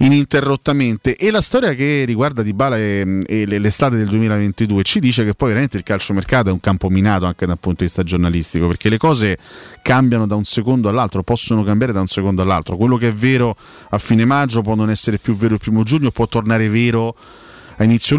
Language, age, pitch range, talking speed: Italian, 30-49, 95-120 Hz, 215 wpm